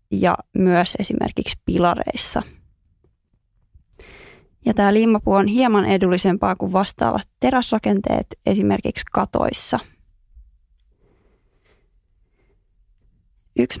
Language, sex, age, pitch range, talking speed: Finnish, female, 20-39, 175-195 Hz, 70 wpm